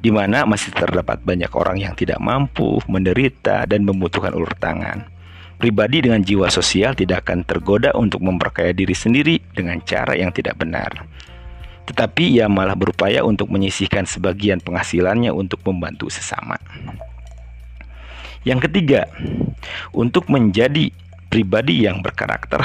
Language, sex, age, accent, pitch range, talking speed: Indonesian, male, 50-69, native, 90-110 Hz, 125 wpm